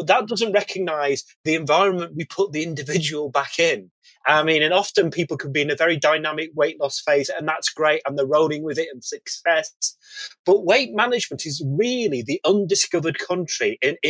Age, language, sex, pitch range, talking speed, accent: 30-49, English, male, 155-225 Hz, 190 wpm, British